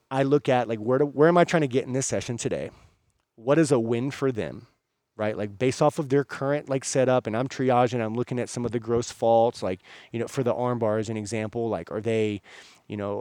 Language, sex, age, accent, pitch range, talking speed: English, male, 30-49, American, 110-130 Hz, 260 wpm